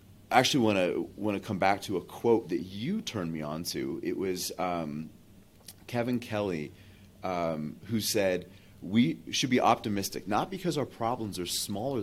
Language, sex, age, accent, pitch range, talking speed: English, male, 30-49, American, 90-110 Hz, 175 wpm